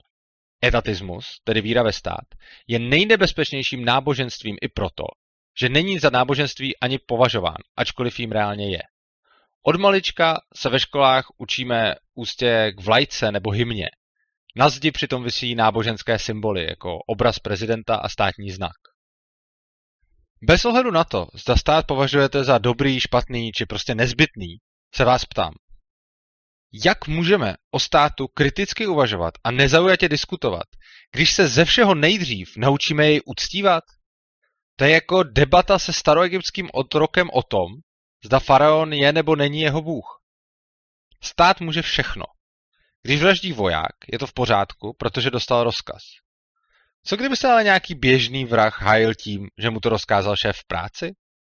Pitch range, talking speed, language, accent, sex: 110-155 Hz, 140 wpm, Czech, native, male